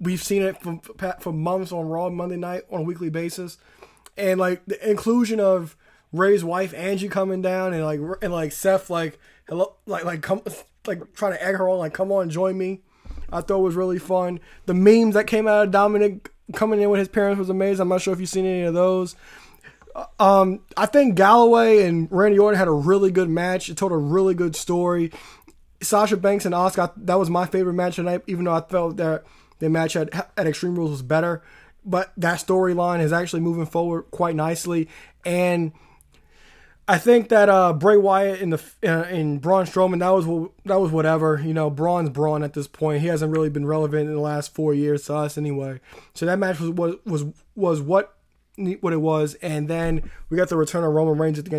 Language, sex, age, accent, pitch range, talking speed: English, male, 20-39, American, 160-190 Hz, 215 wpm